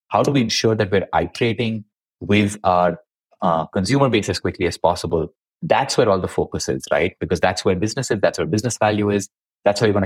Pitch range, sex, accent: 100-135 Hz, male, Indian